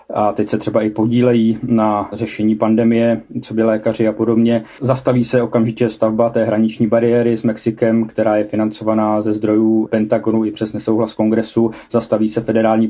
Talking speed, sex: 170 wpm, male